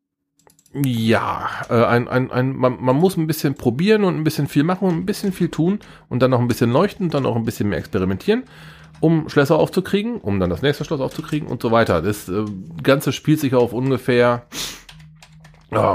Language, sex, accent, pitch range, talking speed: German, male, German, 105-155 Hz, 200 wpm